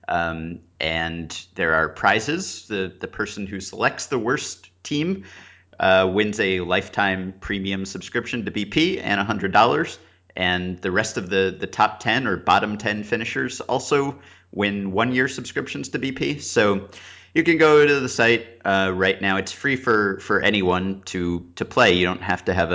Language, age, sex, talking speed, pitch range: English, 30-49, male, 175 wpm, 90-105 Hz